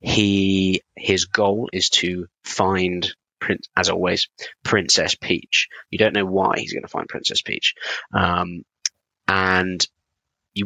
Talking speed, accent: 135 wpm, British